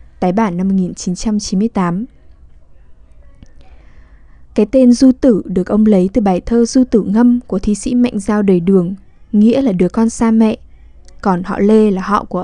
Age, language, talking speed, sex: 10-29, Vietnamese, 175 wpm, female